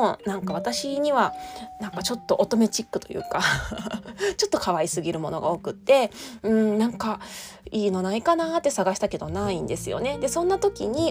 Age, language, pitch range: 20-39, Japanese, 185-275 Hz